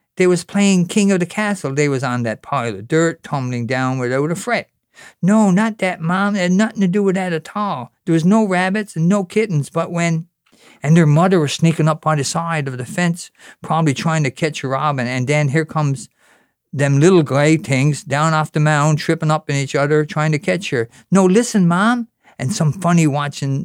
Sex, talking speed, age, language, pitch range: male, 220 wpm, 50-69, English, 155-195 Hz